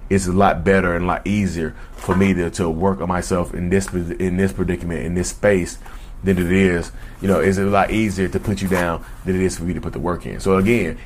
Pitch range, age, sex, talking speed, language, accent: 85-100 Hz, 30-49, male, 260 wpm, English, American